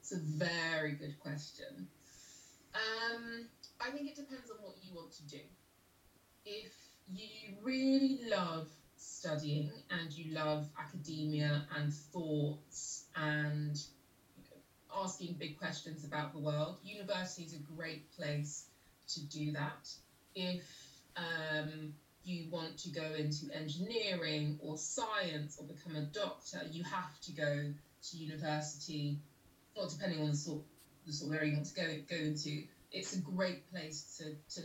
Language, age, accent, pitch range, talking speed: English, 20-39, British, 150-180 Hz, 145 wpm